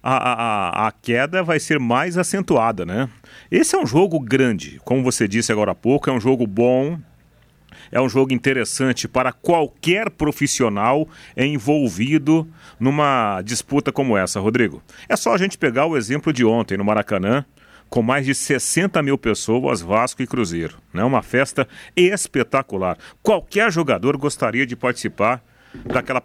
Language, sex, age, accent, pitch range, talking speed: Portuguese, male, 40-59, Brazilian, 115-150 Hz, 150 wpm